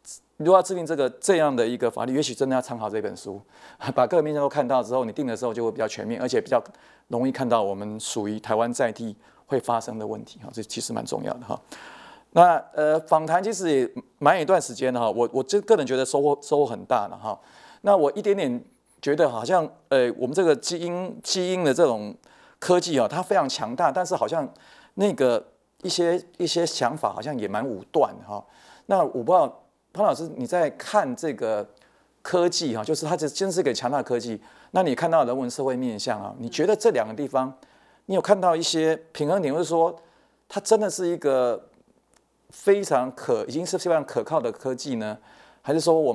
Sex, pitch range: male, 120-175 Hz